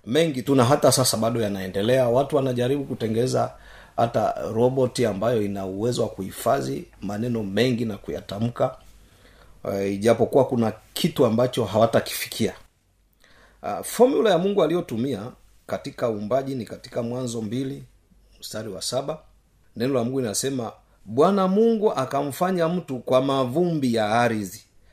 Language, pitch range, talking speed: Swahili, 105-140 Hz, 125 wpm